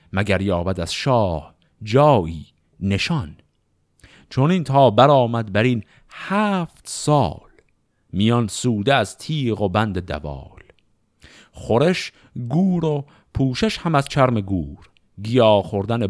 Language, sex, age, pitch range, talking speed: Persian, male, 50-69, 90-125 Hz, 120 wpm